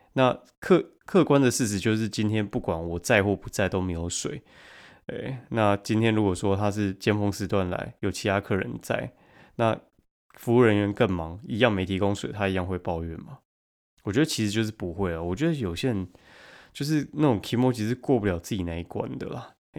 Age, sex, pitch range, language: 20-39, male, 95-120 Hz, Chinese